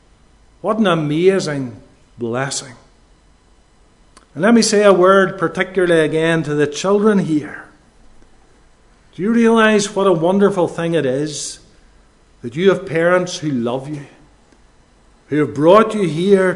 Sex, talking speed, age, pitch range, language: male, 135 wpm, 50-69, 145-190 Hz, English